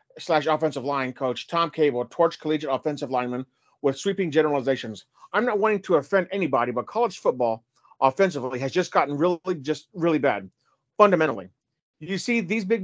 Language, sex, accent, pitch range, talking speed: English, male, American, 135-180 Hz, 165 wpm